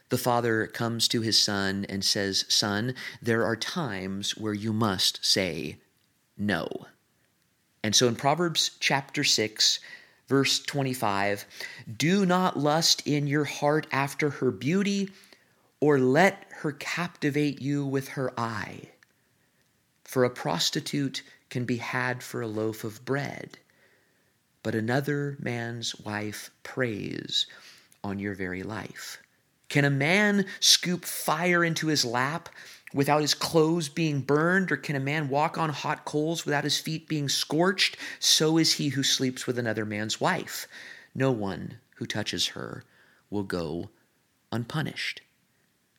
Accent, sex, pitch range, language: American, male, 115-155 Hz, English